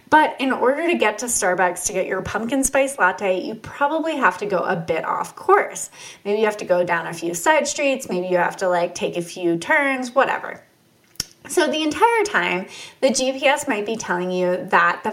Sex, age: female, 20-39